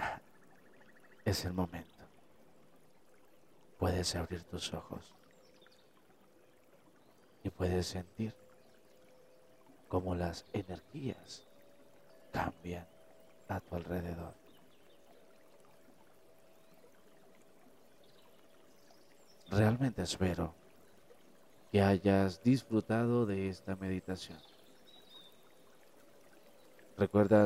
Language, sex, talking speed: Spanish, male, 55 wpm